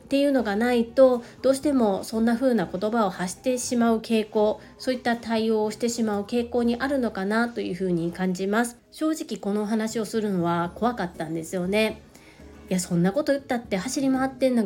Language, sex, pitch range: Japanese, female, 195-250 Hz